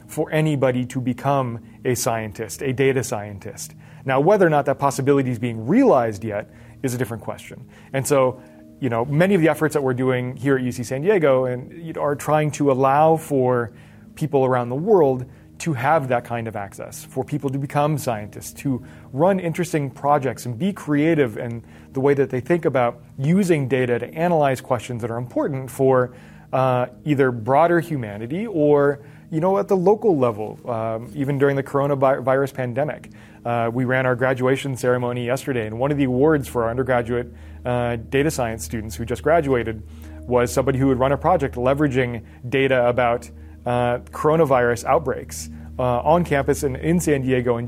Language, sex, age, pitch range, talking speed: English, male, 30-49, 120-145 Hz, 180 wpm